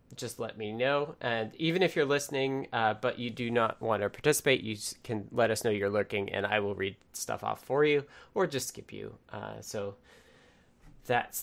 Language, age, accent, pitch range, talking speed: English, 20-39, American, 110-140 Hz, 205 wpm